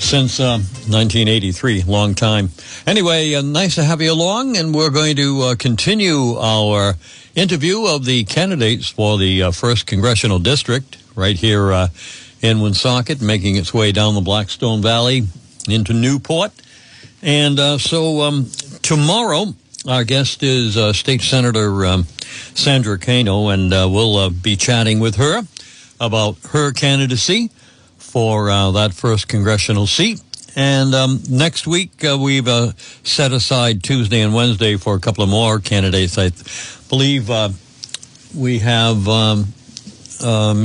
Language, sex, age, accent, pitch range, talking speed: English, male, 60-79, American, 105-140 Hz, 145 wpm